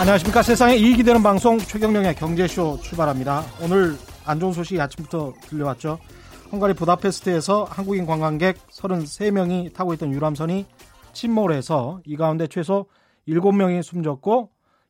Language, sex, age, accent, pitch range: Korean, male, 30-49, native, 155-200 Hz